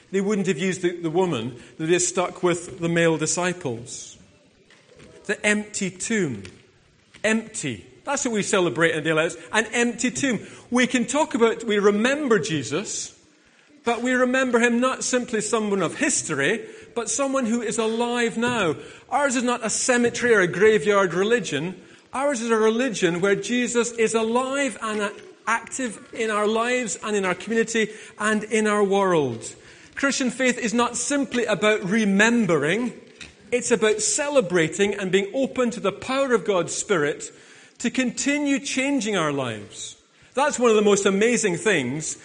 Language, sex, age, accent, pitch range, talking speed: English, male, 40-59, British, 185-245 Hz, 160 wpm